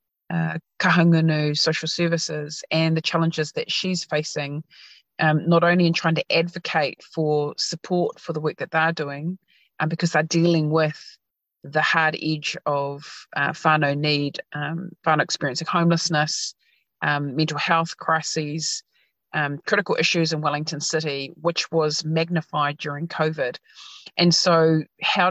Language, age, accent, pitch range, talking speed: English, 30-49, Australian, 150-170 Hz, 140 wpm